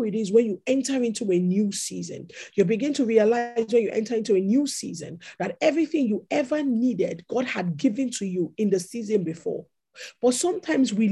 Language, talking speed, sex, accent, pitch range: English, 200 wpm, male, Nigerian, 185-250 Hz